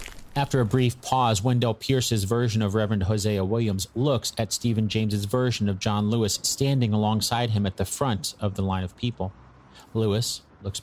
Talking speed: 175 wpm